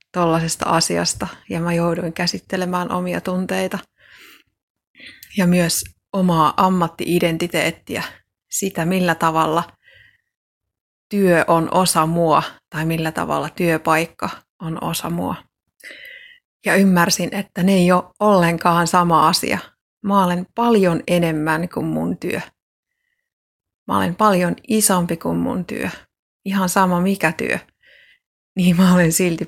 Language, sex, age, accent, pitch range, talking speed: Finnish, female, 30-49, native, 160-190 Hz, 115 wpm